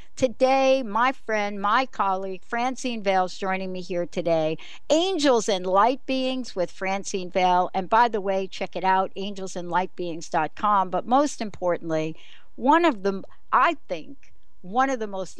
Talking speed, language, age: 150 wpm, English, 60-79